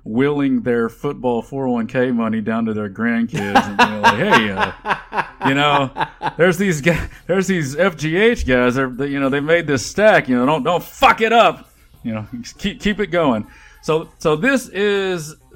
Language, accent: English, American